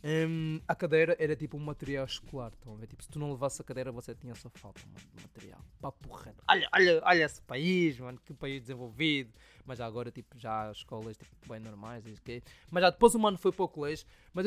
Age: 20-39